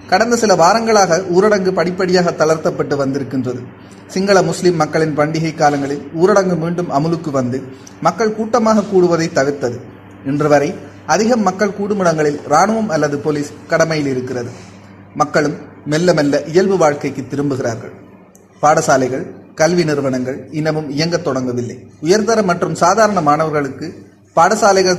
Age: 30-49